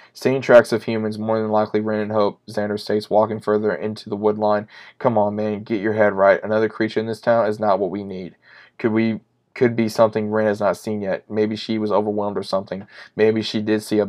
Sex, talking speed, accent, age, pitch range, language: male, 240 wpm, American, 20-39, 105-110 Hz, English